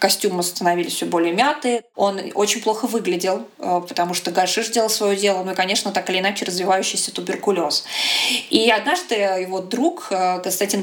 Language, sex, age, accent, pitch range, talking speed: Russian, female, 20-39, native, 195-255 Hz, 155 wpm